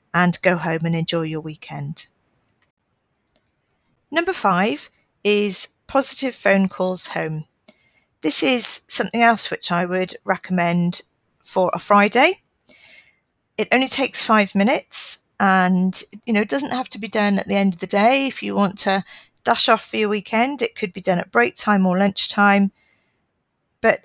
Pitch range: 180-215 Hz